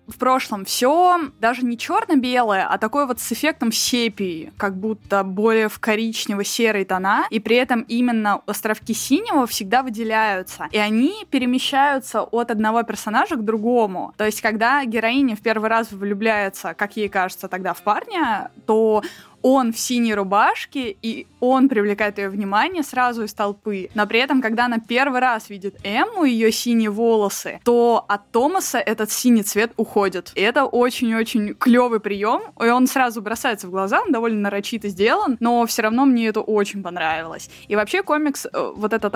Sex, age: female, 20-39